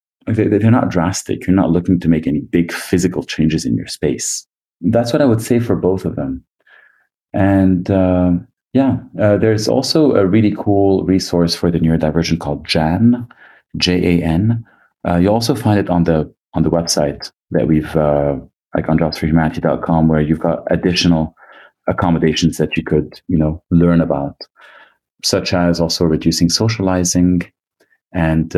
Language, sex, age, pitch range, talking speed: English, male, 30-49, 80-95 Hz, 155 wpm